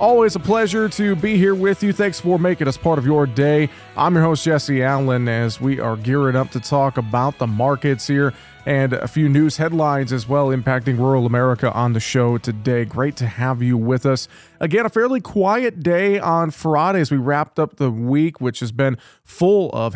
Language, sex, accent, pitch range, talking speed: English, male, American, 130-165 Hz, 210 wpm